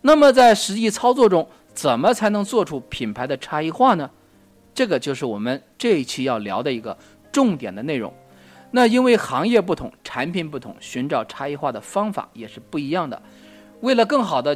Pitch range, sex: 120-200 Hz, male